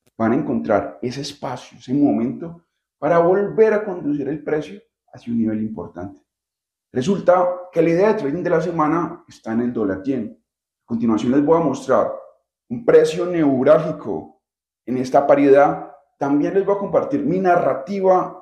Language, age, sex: Spanish, 30-49, male